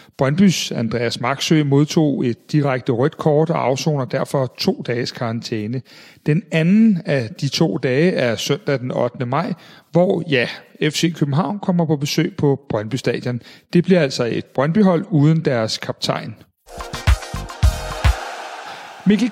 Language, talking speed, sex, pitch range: Danish, 135 wpm, male, 130-170 Hz